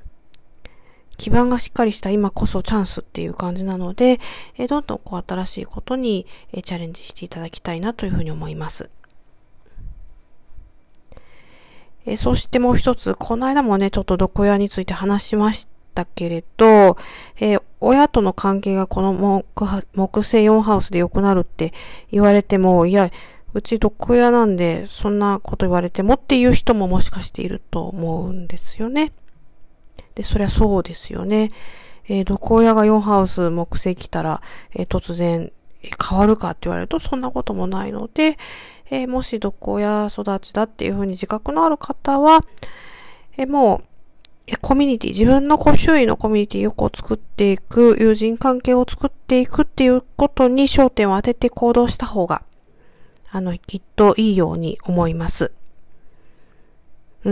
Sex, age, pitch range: female, 40-59, 185-245 Hz